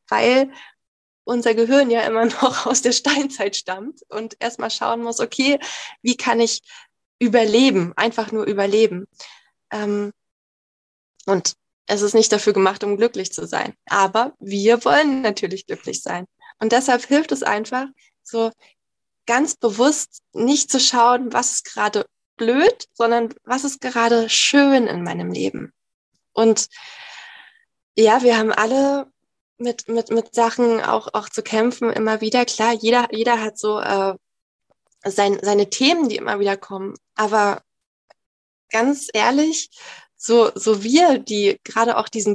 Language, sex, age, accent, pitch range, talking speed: German, female, 20-39, German, 205-245 Hz, 140 wpm